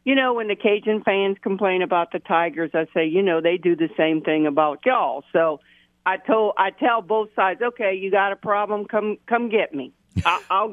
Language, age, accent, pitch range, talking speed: English, 50-69, American, 155-210 Hz, 215 wpm